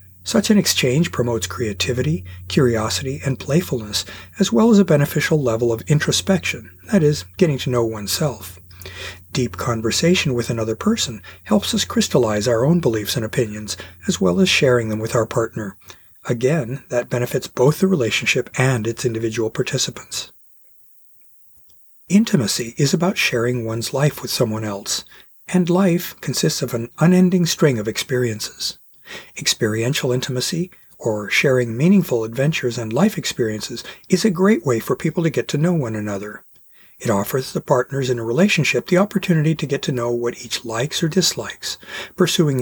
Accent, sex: American, male